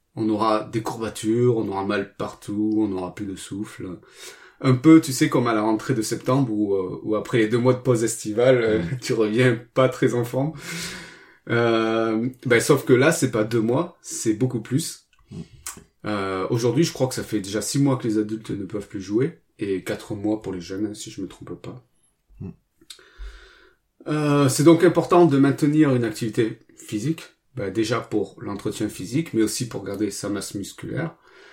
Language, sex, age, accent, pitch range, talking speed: French, male, 30-49, French, 110-135 Hz, 185 wpm